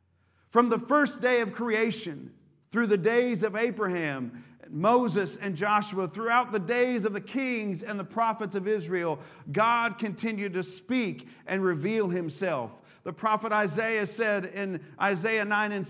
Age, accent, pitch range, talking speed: 40-59, American, 180-240 Hz, 150 wpm